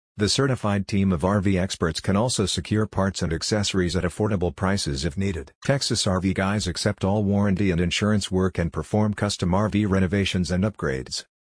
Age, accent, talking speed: 50-69, American, 175 wpm